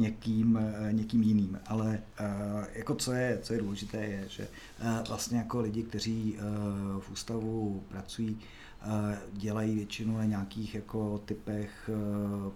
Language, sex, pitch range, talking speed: Czech, male, 105-115 Hz, 145 wpm